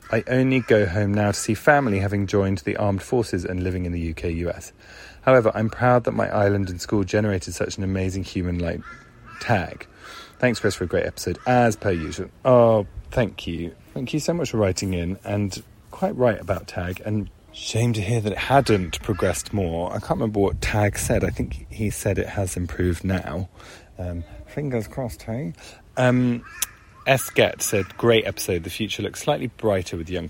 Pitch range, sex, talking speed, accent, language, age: 90-115 Hz, male, 190 wpm, British, English, 30-49